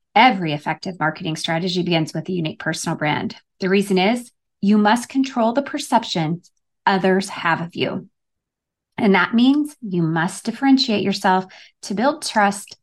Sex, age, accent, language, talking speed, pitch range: female, 20-39, American, English, 150 wpm, 175-270 Hz